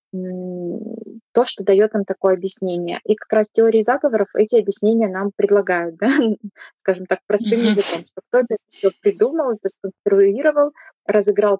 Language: Russian